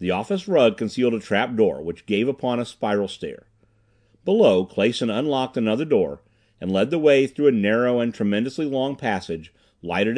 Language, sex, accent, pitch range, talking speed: English, male, American, 105-135 Hz, 165 wpm